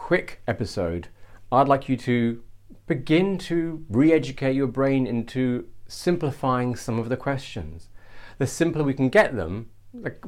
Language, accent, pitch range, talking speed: English, British, 100-125 Hz, 135 wpm